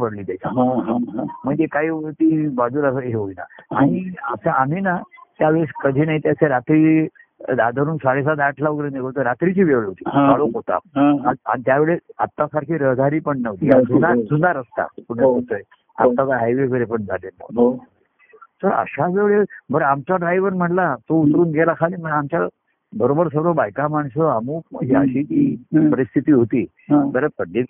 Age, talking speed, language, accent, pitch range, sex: 60-79, 130 wpm, Marathi, native, 140-210 Hz, male